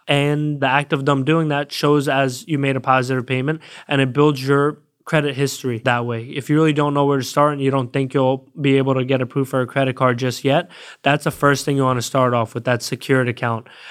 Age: 20-39